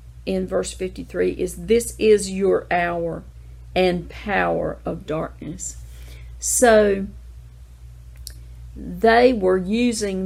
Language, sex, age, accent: English, female, 50-69, American